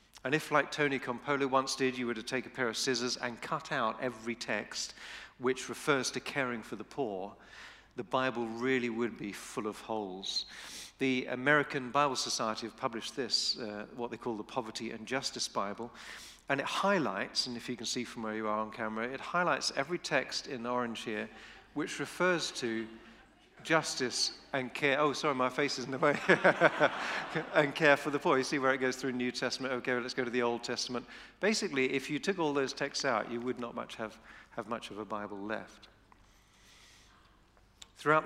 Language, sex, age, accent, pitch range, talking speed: English, male, 40-59, British, 115-140 Hz, 200 wpm